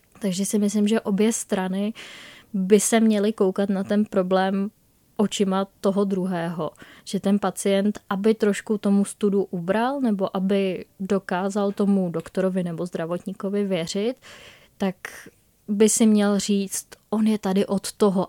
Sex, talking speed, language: female, 140 wpm, Czech